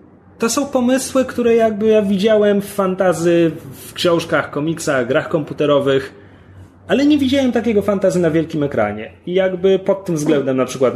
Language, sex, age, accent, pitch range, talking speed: Polish, male, 30-49, native, 135-195 Hz, 160 wpm